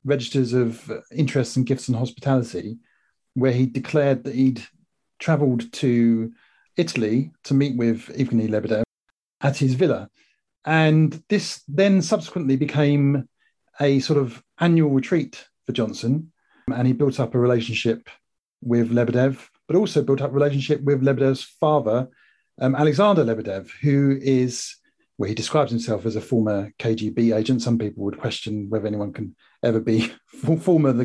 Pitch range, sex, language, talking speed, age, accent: 120-150 Hz, male, English, 155 wpm, 40-59, British